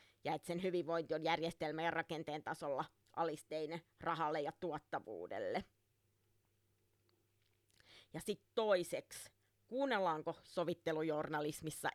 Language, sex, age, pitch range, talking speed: Finnish, female, 30-49, 150-175 Hz, 90 wpm